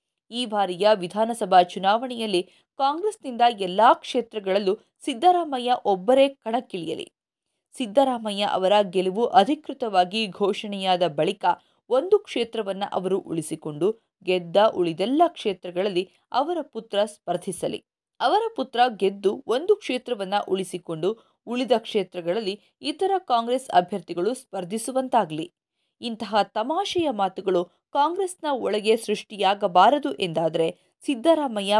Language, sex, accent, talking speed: Kannada, female, native, 85 wpm